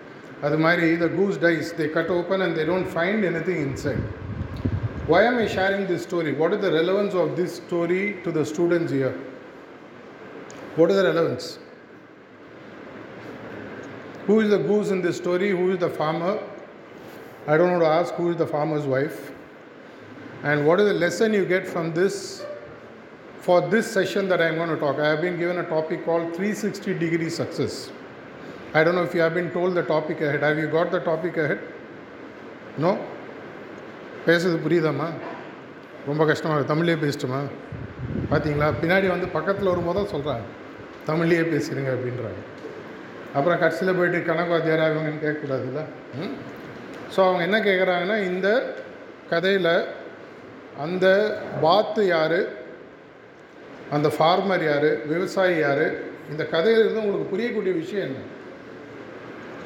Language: Tamil